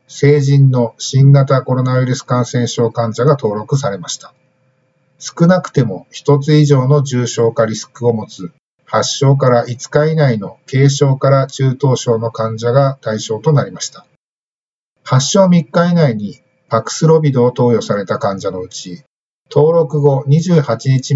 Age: 50-69